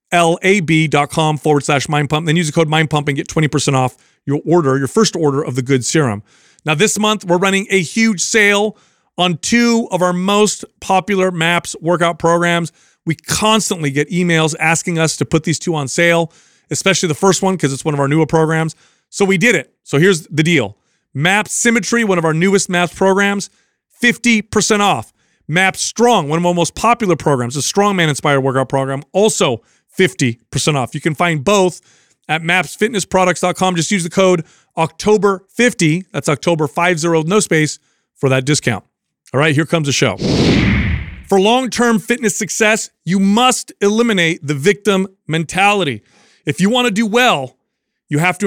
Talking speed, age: 175 wpm, 30-49